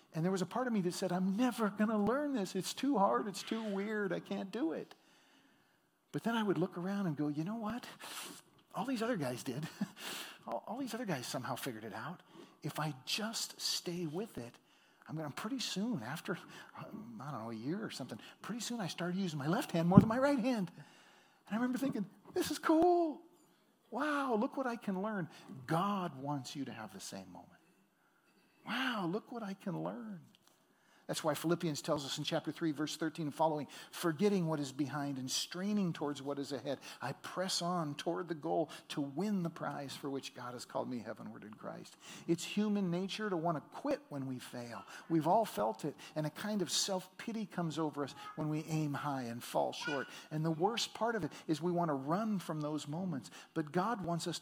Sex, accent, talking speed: male, American, 215 wpm